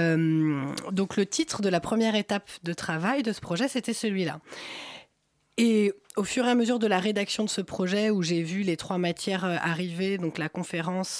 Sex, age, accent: female, 30-49, French